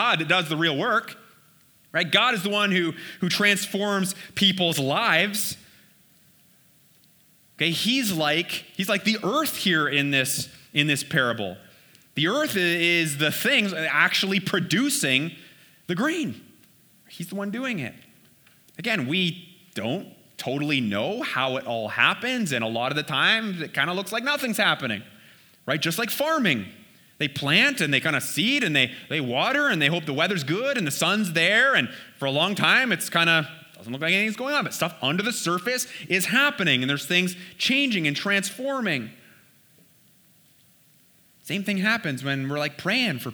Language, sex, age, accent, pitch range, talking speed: English, male, 30-49, American, 145-205 Hz, 170 wpm